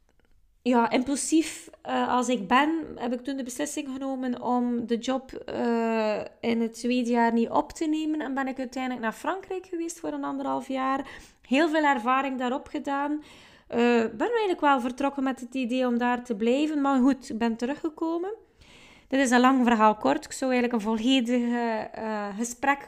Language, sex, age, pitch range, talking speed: Dutch, female, 20-39, 235-280 Hz, 180 wpm